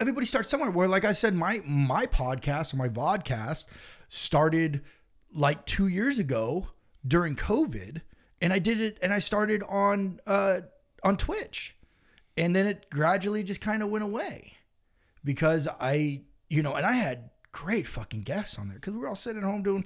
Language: English